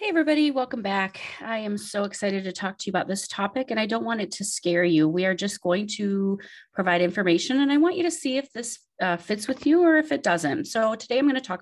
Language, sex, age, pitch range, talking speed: English, female, 30-49, 175-230 Hz, 270 wpm